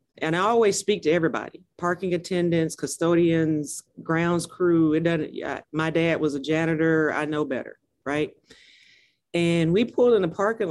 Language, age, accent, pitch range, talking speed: English, 40-59, American, 150-190 Hz, 165 wpm